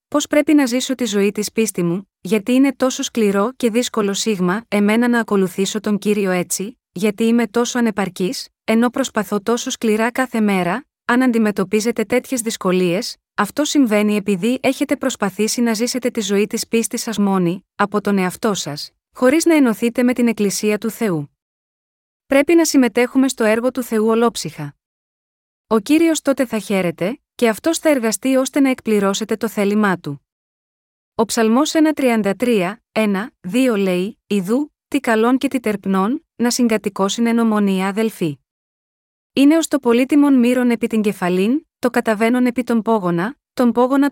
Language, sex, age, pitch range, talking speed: Greek, female, 20-39, 205-250 Hz, 160 wpm